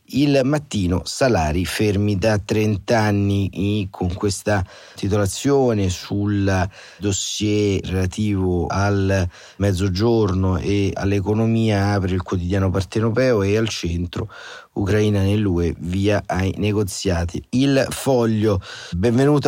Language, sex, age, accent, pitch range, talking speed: Italian, male, 30-49, native, 95-110 Hz, 100 wpm